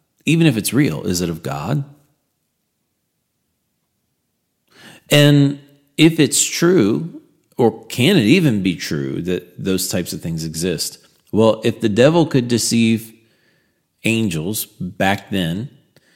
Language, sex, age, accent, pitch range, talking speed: English, male, 40-59, American, 95-125 Hz, 125 wpm